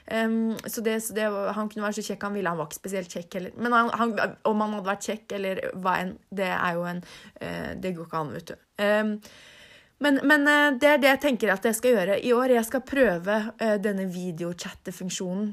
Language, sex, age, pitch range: English, female, 30-49, 175-215 Hz